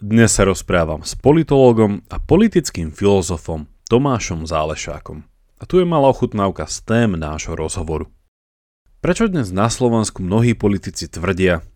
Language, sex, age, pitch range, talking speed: Slovak, male, 30-49, 85-115 Hz, 135 wpm